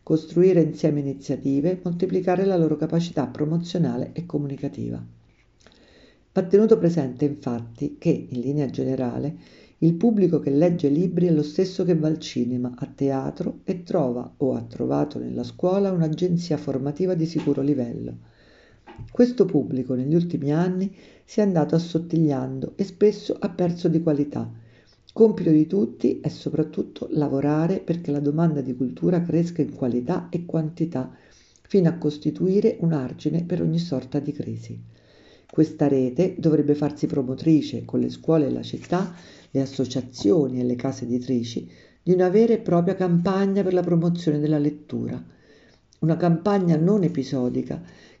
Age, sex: 50-69, female